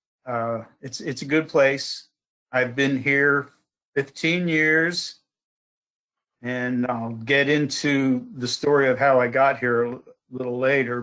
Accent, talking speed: American, 135 wpm